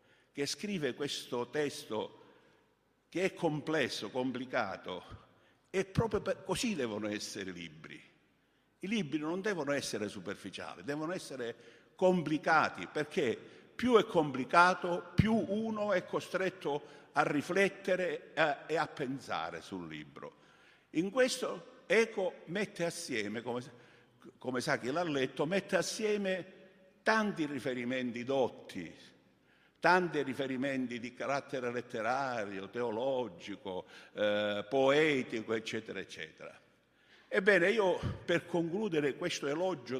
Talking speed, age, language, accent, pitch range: 105 wpm, 50-69, Italian, native, 130-185 Hz